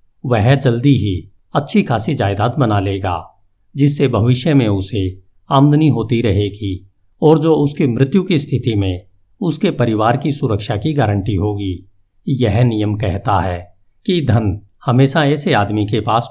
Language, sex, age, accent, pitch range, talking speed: Hindi, male, 50-69, native, 100-135 Hz, 145 wpm